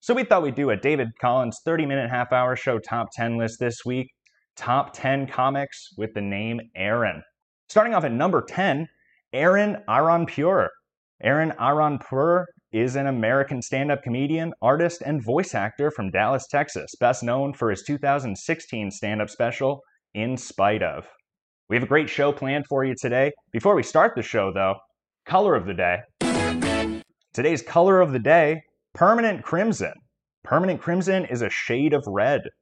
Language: English